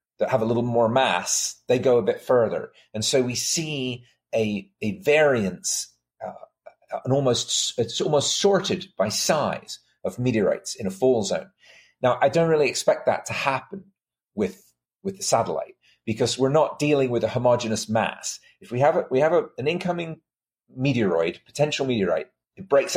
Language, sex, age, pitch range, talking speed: English, male, 40-59, 115-185 Hz, 170 wpm